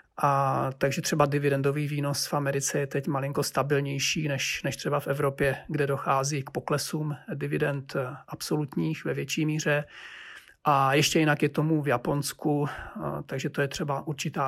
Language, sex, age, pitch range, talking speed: Czech, male, 40-59, 135-150 Hz, 150 wpm